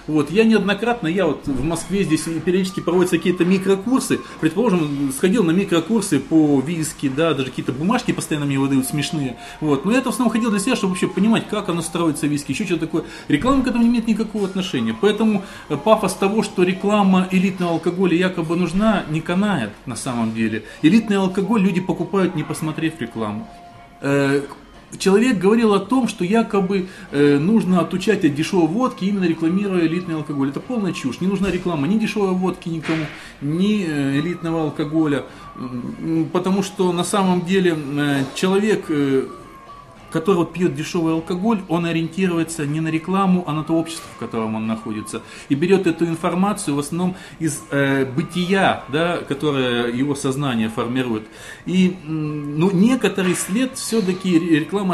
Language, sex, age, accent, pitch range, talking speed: Russian, male, 30-49, native, 150-195 Hz, 160 wpm